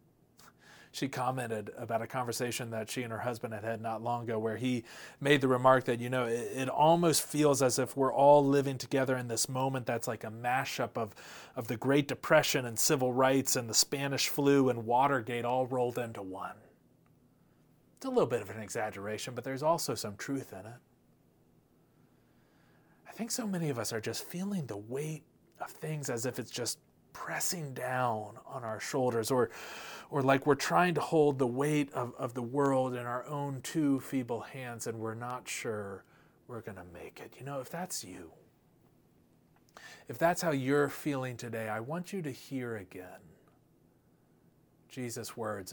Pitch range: 115-140 Hz